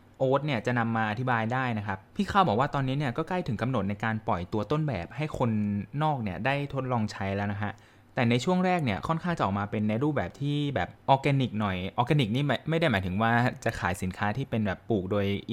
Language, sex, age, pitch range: Thai, male, 20-39, 105-135 Hz